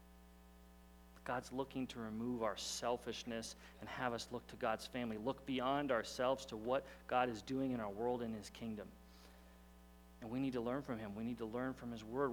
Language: English